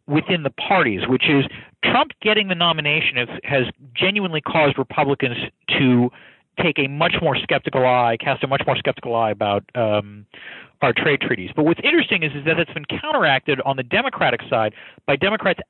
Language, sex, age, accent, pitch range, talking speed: English, male, 40-59, American, 120-160 Hz, 175 wpm